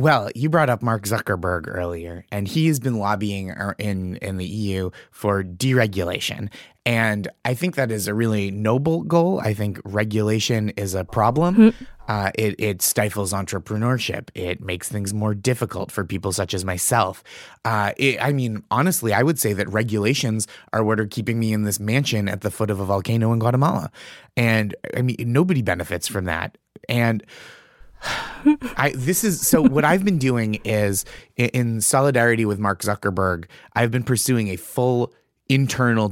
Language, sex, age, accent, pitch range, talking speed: English, male, 20-39, American, 105-135 Hz, 170 wpm